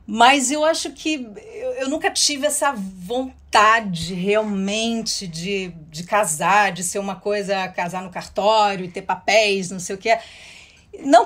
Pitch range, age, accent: 195-260 Hz, 40-59, Brazilian